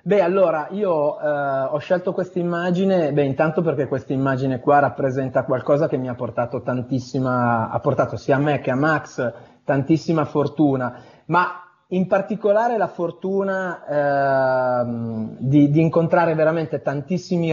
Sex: male